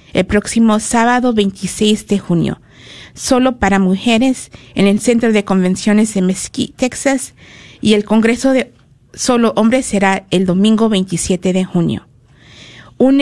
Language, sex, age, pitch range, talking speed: Spanish, female, 50-69, 190-230 Hz, 135 wpm